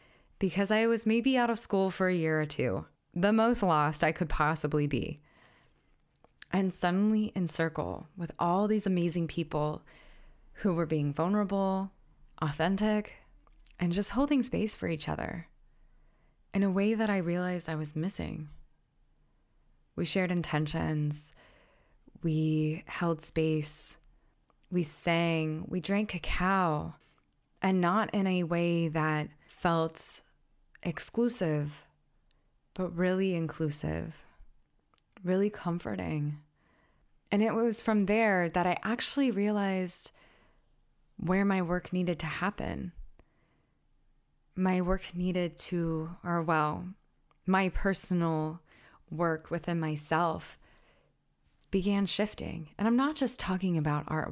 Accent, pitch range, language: American, 160-195 Hz, English